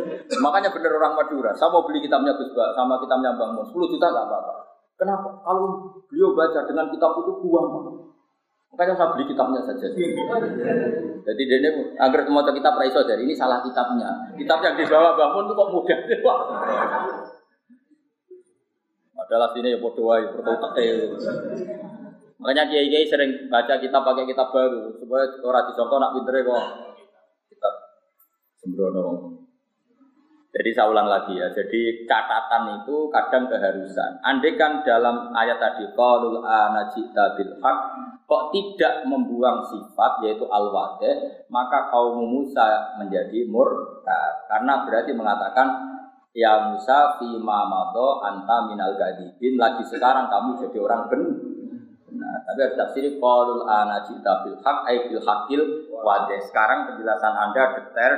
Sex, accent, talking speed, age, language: male, native, 135 wpm, 30-49, Indonesian